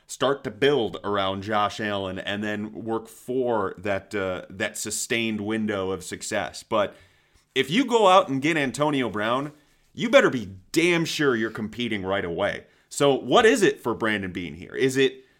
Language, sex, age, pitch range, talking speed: English, male, 30-49, 105-135 Hz, 175 wpm